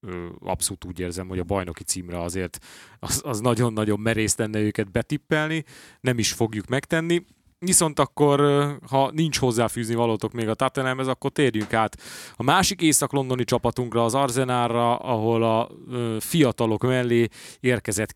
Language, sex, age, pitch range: Hungarian, male, 30-49, 105-125 Hz